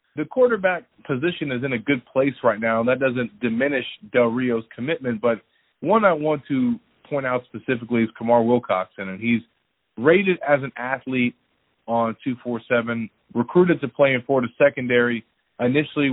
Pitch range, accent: 120-145 Hz, American